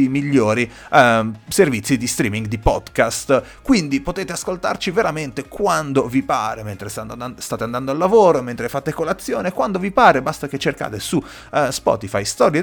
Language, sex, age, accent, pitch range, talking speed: Italian, male, 30-49, native, 110-155 Hz, 150 wpm